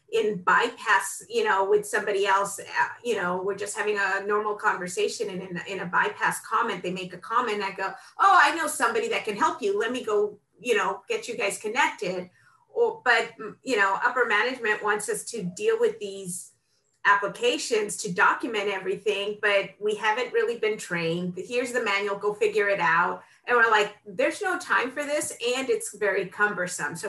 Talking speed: 190 wpm